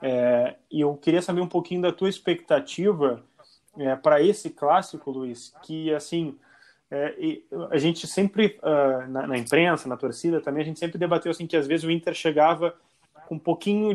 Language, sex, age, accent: Portuguese, male, 20-39, Brazilian